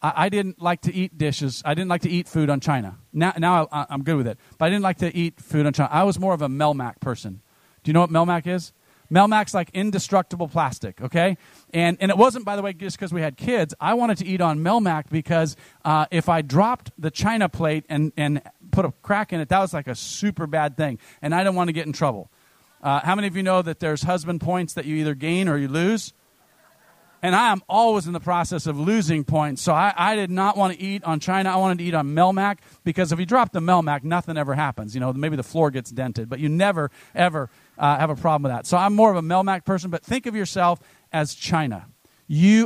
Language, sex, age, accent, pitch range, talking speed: English, male, 40-59, American, 150-190 Hz, 250 wpm